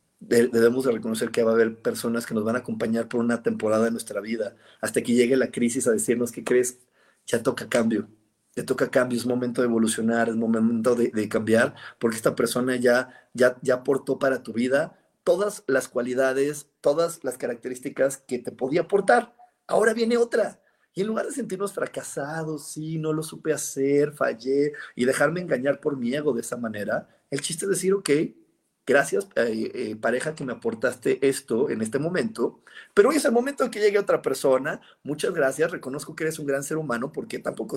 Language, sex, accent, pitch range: Spanish, male, Mexican, 115-155 Hz